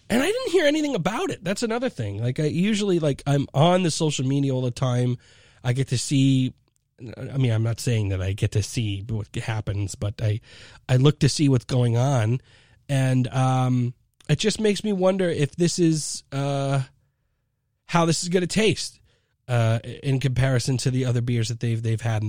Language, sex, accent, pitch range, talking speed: English, male, American, 115-150 Hz, 205 wpm